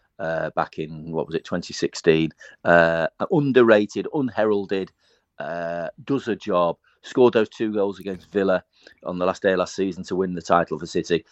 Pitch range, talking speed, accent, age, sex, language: 85-110 Hz, 175 wpm, British, 40-59, male, English